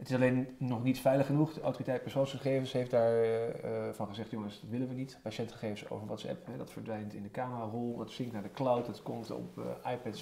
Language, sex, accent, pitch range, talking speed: Dutch, male, Dutch, 110-130 Hz, 230 wpm